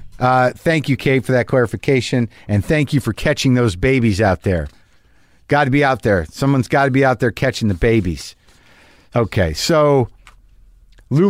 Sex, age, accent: male, 50-69, American